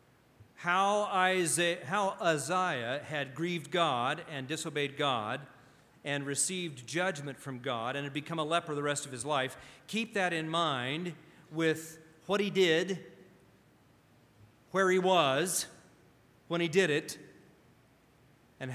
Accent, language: American, English